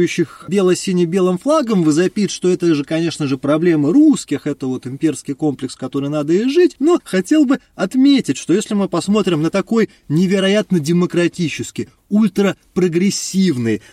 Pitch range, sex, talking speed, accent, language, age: 150-220 Hz, male, 140 wpm, native, Russian, 30-49